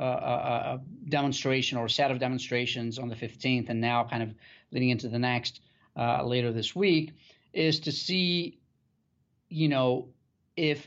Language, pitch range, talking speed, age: English, 120-150 Hz, 160 wpm, 40-59